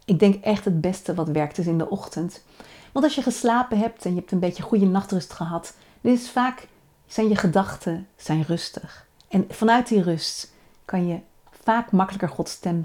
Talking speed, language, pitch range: 175 wpm, Dutch, 170-215 Hz